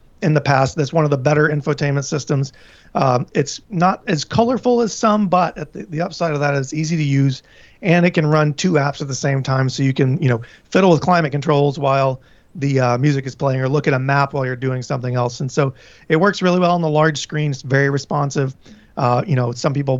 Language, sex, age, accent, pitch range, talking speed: English, male, 40-59, American, 135-160 Hz, 245 wpm